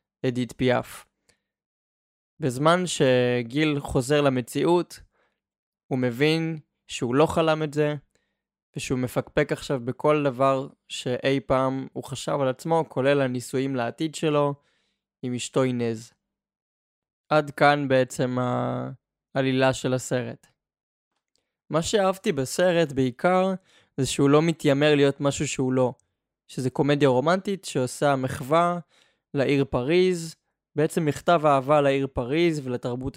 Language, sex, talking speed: Hebrew, male, 110 wpm